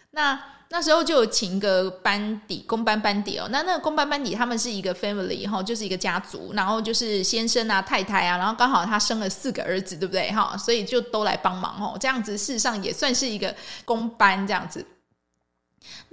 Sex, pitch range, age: female, 195-260 Hz, 20-39